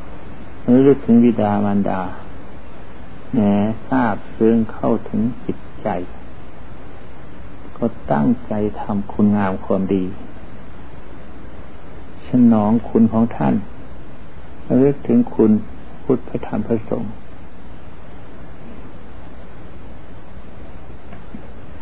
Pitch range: 95-115 Hz